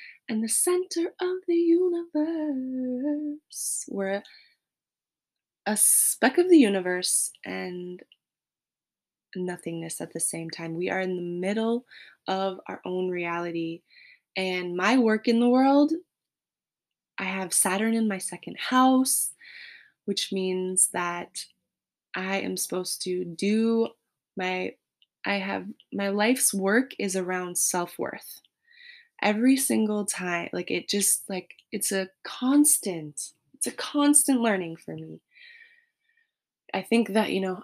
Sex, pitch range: female, 180-250 Hz